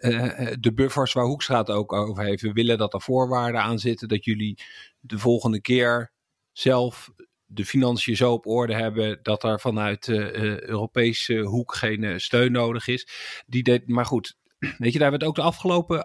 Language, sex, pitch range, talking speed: English, male, 110-130 Hz, 195 wpm